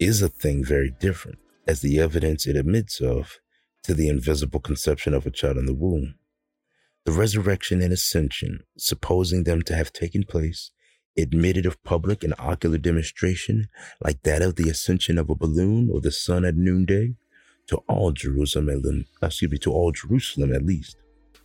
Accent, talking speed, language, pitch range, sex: American, 170 wpm, English, 75-95 Hz, male